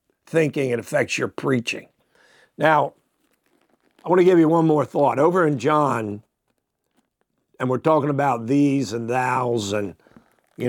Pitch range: 120-155 Hz